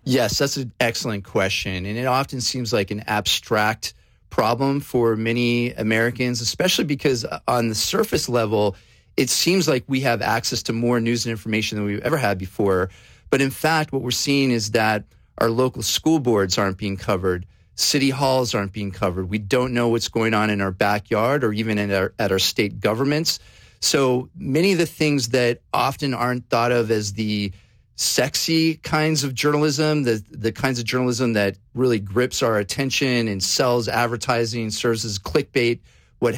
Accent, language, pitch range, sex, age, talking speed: American, English, 105-130 Hz, male, 40-59, 175 wpm